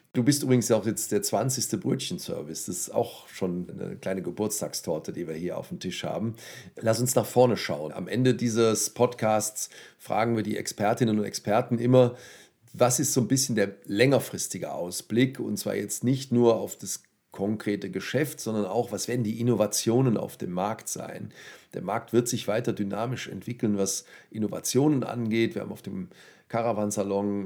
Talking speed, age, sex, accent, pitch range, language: 175 wpm, 40-59, male, German, 105-130 Hz, German